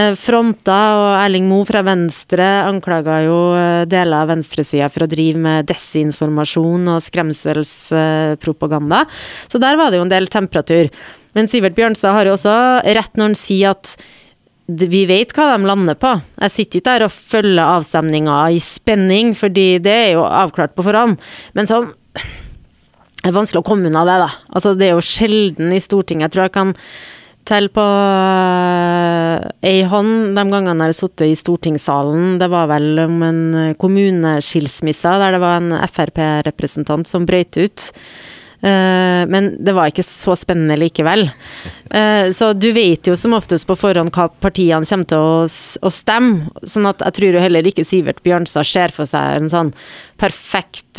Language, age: English, 30-49